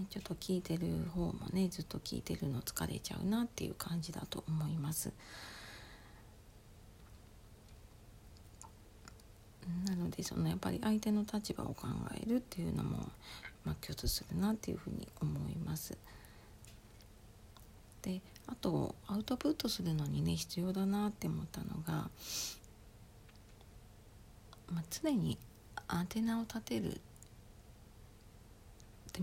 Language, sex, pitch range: Japanese, female, 105-180 Hz